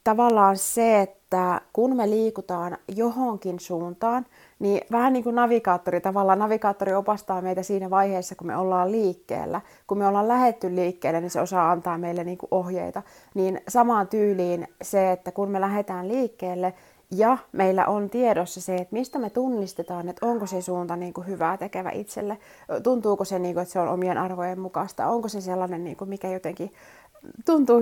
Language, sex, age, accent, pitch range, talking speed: Finnish, female, 30-49, native, 180-220 Hz, 170 wpm